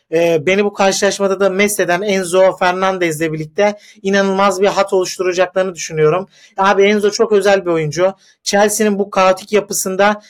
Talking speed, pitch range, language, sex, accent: 135 wpm, 175-200 Hz, Turkish, male, native